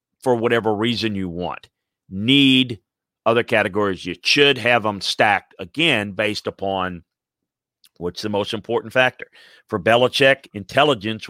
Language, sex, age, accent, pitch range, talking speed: English, male, 40-59, American, 90-120 Hz, 125 wpm